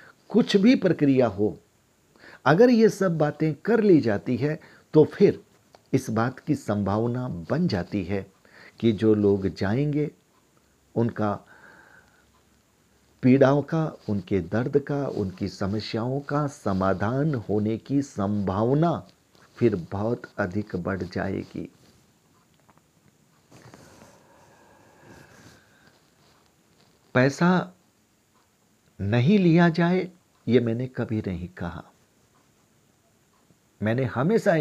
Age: 50-69